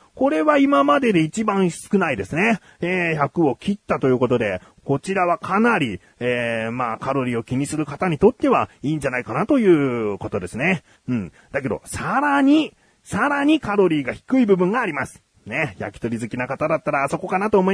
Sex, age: male, 40-59